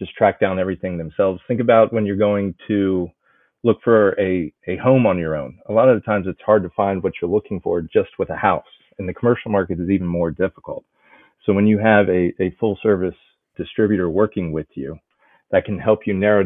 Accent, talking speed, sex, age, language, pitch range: American, 220 wpm, male, 40-59, English, 90-105 Hz